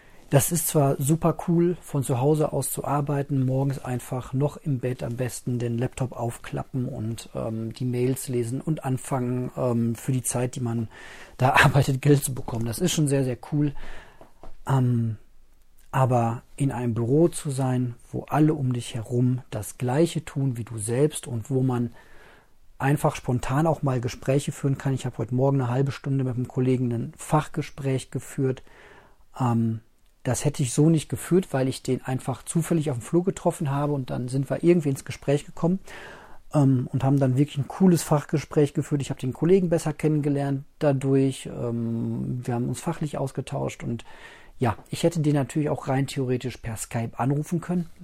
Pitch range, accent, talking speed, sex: 125-150 Hz, German, 180 wpm, male